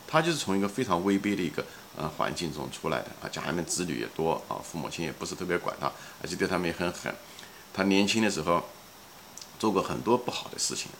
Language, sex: Chinese, male